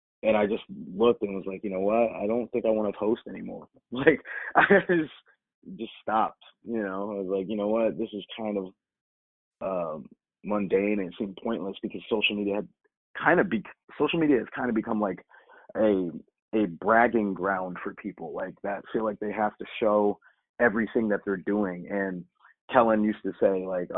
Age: 30-49